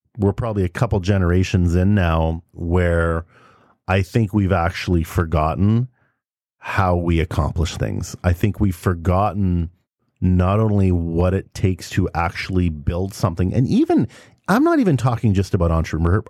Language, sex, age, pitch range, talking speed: English, male, 40-59, 90-115 Hz, 145 wpm